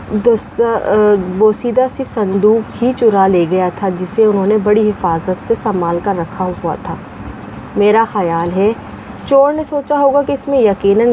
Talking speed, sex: 160 wpm, female